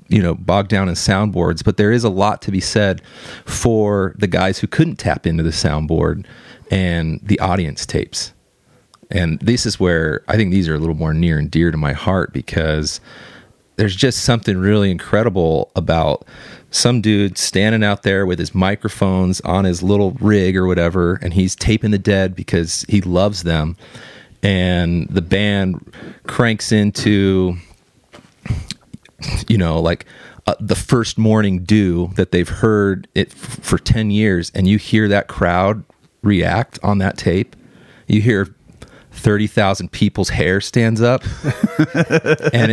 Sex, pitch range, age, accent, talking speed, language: male, 90-110 Hz, 30-49, American, 155 wpm, English